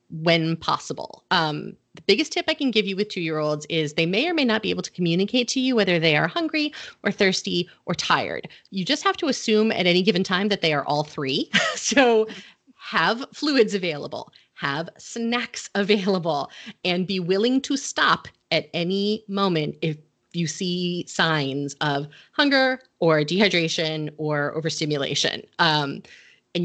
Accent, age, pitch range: American, 30-49, 160-240 Hz